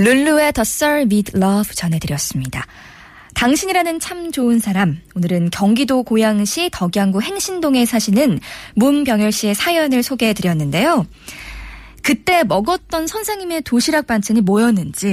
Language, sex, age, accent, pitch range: Korean, female, 20-39, native, 195-290 Hz